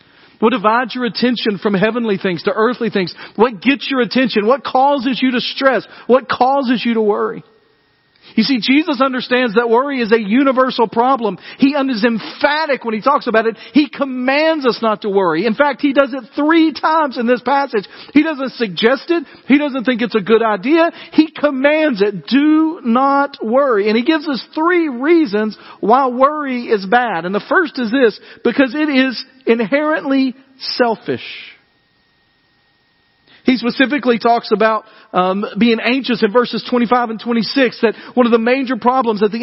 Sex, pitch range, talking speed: male, 205-270 Hz, 175 wpm